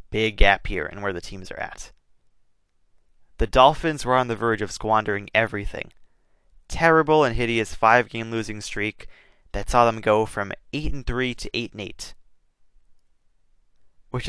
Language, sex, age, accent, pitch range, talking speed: English, male, 20-39, American, 100-120 Hz, 160 wpm